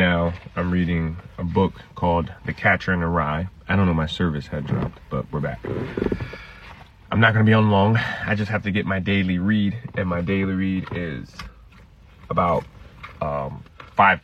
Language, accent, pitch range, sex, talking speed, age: English, American, 85-110 Hz, male, 185 wpm, 30-49